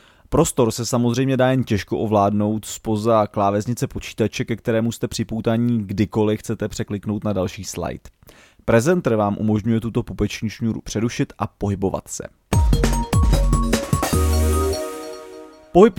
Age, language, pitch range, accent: 30-49, Czech, 100-125 Hz, native